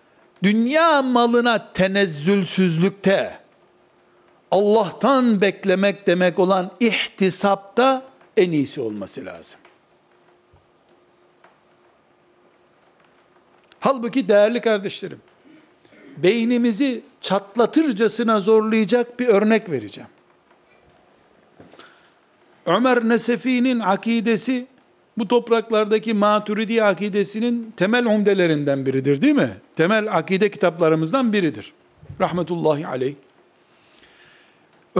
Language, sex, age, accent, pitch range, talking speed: Turkish, male, 60-79, native, 185-240 Hz, 65 wpm